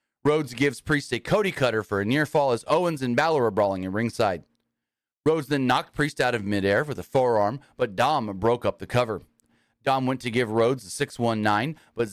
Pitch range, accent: 115-155 Hz, American